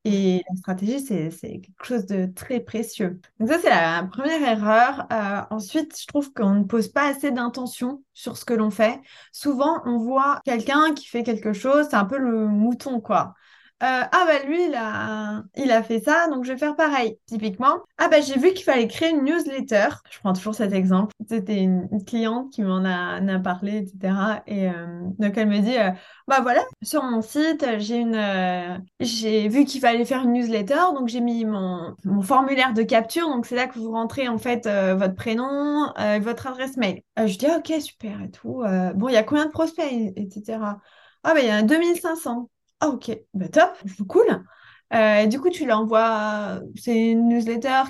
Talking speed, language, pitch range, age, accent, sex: 215 wpm, French, 215-285 Hz, 20-39, French, female